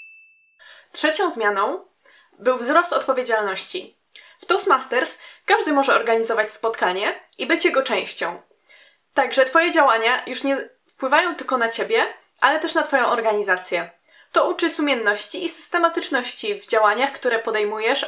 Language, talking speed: English, 125 wpm